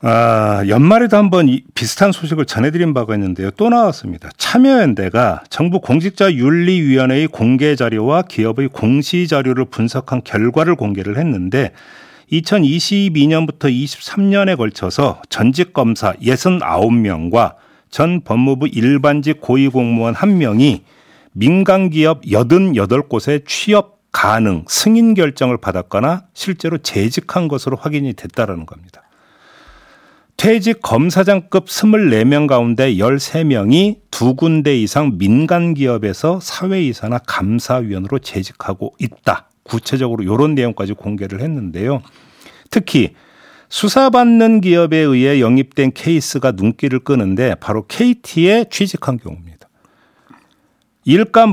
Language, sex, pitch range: Korean, male, 115-170 Hz